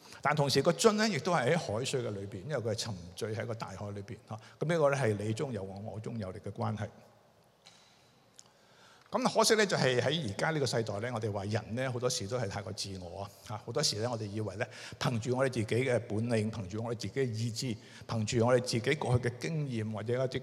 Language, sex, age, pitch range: Chinese, male, 60-79, 105-130 Hz